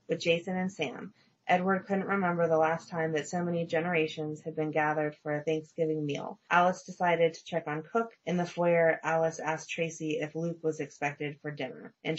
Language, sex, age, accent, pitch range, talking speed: English, female, 30-49, American, 155-180 Hz, 195 wpm